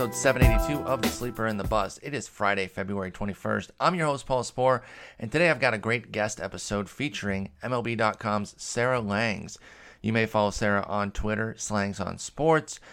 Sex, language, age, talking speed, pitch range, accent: male, English, 30-49, 180 wpm, 100-125 Hz, American